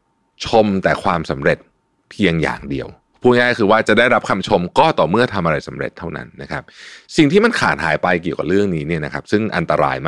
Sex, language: male, Thai